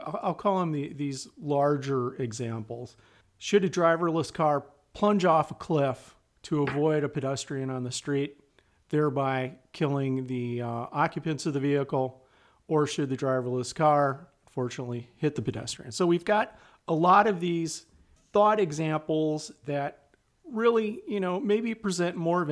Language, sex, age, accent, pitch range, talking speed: English, male, 40-59, American, 135-180 Hz, 145 wpm